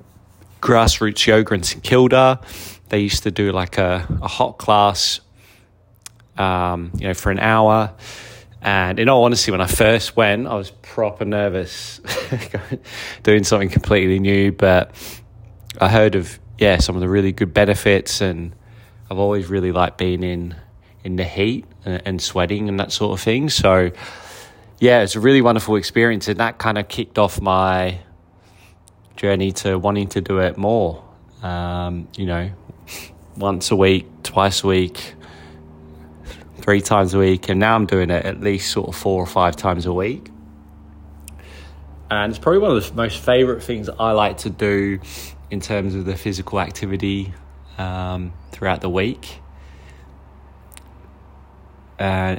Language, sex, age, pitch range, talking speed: English, male, 20-39, 90-105 Hz, 160 wpm